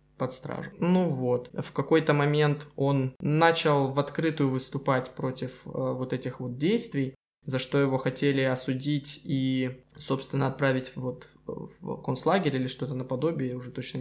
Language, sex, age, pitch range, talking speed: Russian, male, 20-39, 130-150 Hz, 145 wpm